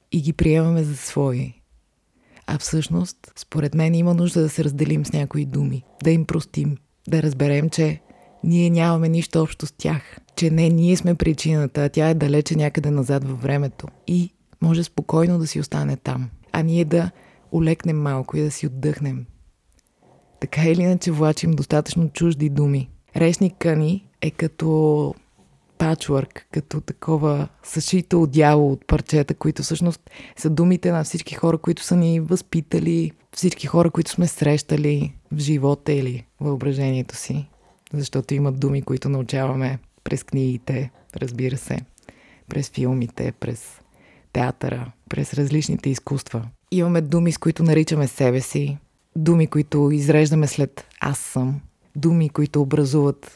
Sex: female